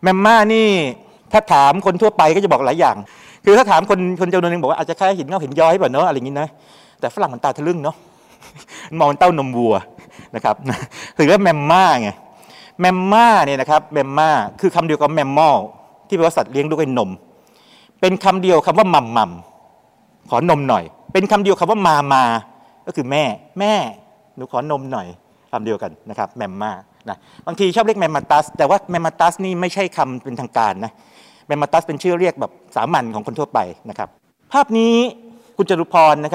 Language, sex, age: Thai, male, 60-79